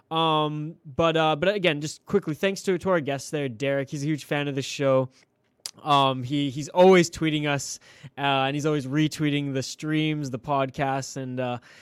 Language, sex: English, male